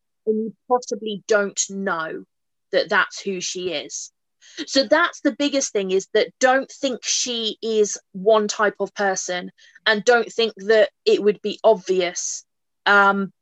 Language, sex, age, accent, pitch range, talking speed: English, female, 20-39, British, 200-270 Hz, 150 wpm